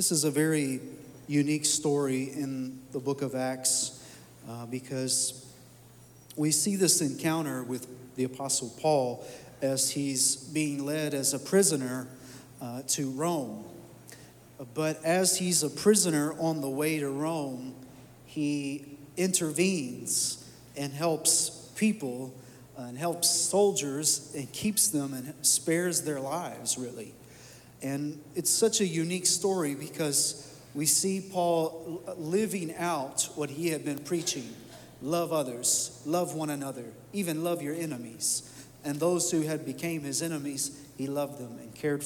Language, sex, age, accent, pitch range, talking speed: English, male, 40-59, American, 130-160 Hz, 135 wpm